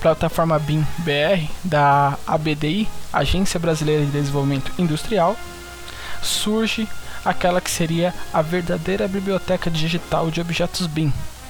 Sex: male